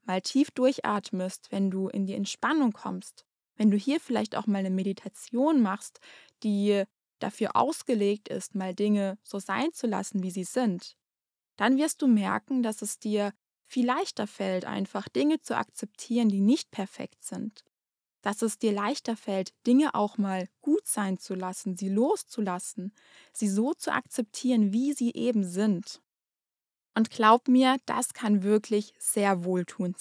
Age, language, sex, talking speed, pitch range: 20-39, German, female, 160 wpm, 200-250 Hz